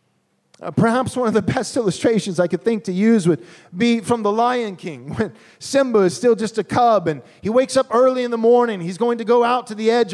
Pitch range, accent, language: 180-255 Hz, American, English